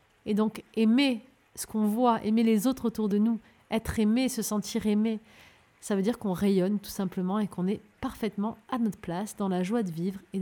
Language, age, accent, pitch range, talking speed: French, 30-49, French, 195-235 Hz, 215 wpm